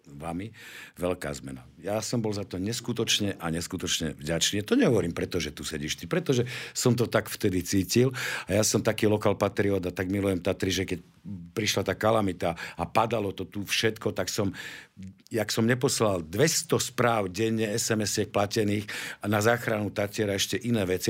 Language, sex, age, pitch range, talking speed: Slovak, male, 50-69, 90-110 Hz, 170 wpm